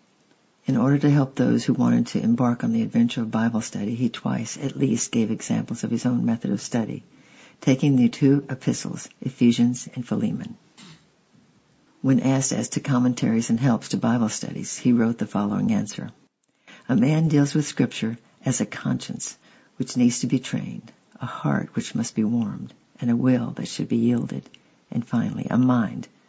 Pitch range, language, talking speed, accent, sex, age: 115-135 Hz, English, 180 wpm, American, female, 60-79